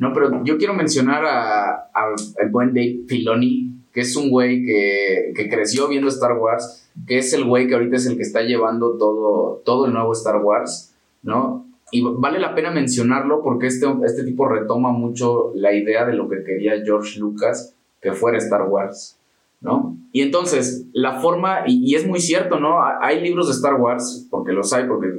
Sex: male